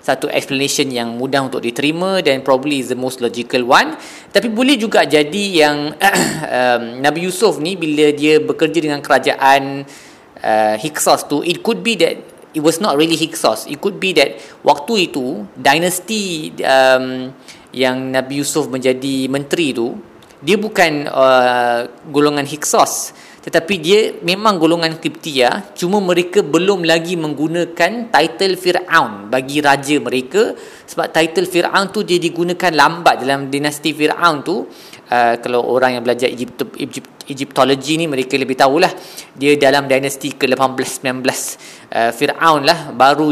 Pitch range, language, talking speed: 130-170 Hz, Malay, 145 wpm